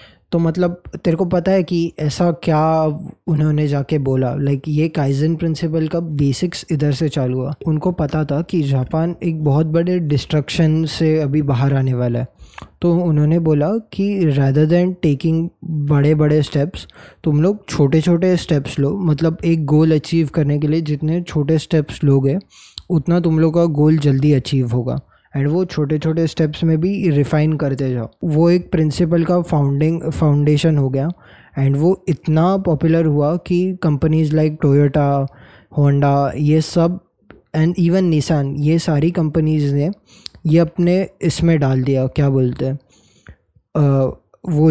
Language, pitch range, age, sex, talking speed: Hindi, 145-165 Hz, 20-39, male, 160 wpm